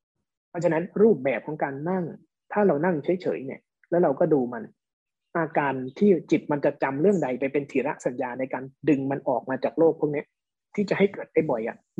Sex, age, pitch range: male, 20-39, 140-175 Hz